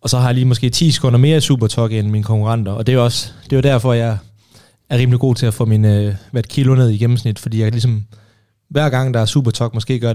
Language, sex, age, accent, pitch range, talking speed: Danish, male, 30-49, native, 115-135 Hz, 270 wpm